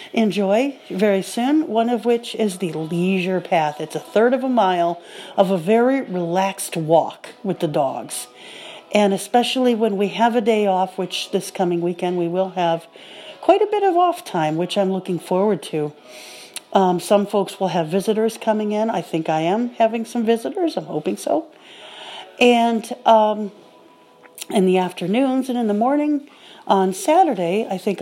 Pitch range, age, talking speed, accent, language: 180-235 Hz, 50-69, 175 wpm, American, English